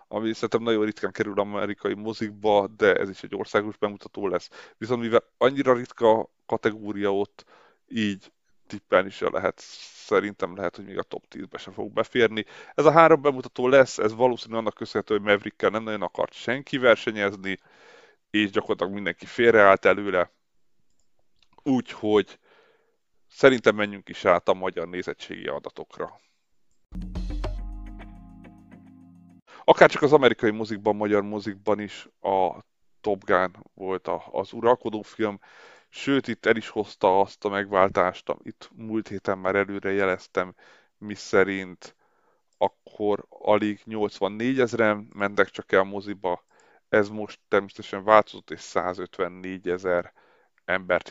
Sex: male